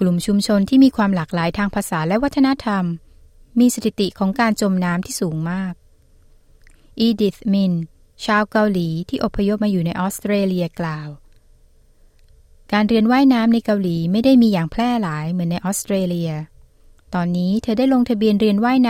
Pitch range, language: 180-240 Hz, Thai